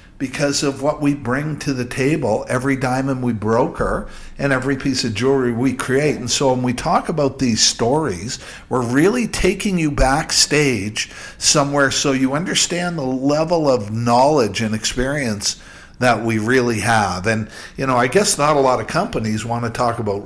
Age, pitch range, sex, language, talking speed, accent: 50-69, 115-150 Hz, male, English, 180 wpm, American